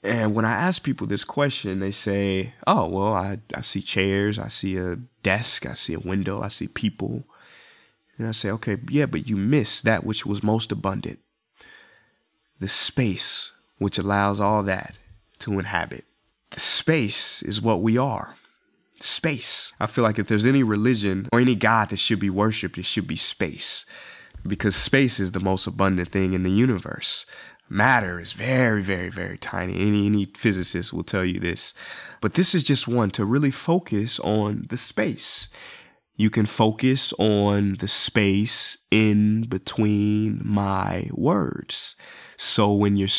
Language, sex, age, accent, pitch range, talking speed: English, male, 20-39, American, 95-115 Hz, 165 wpm